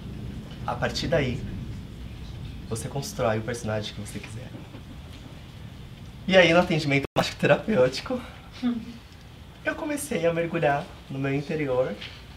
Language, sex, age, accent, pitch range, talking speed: Portuguese, male, 20-39, Brazilian, 115-155 Hz, 105 wpm